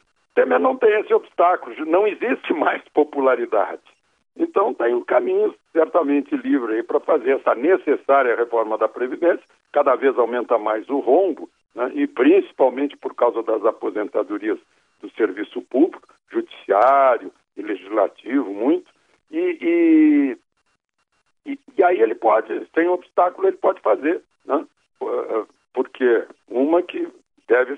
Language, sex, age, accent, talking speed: Portuguese, male, 60-79, Brazilian, 130 wpm